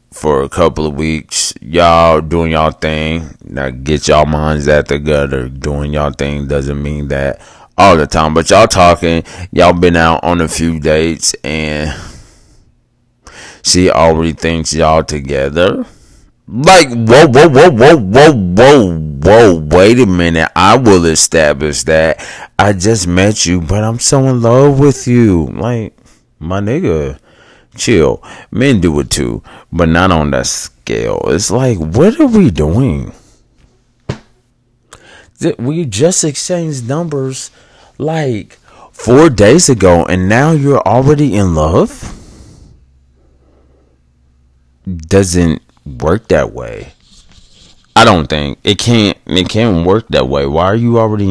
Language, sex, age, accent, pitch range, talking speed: English, male, 30-49, American, 75-115 Hz, 135 wpm